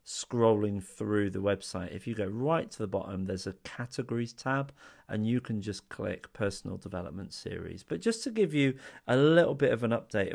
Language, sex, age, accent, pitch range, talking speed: English, male, 40-59, British, 95-125 Hz, 195 wpm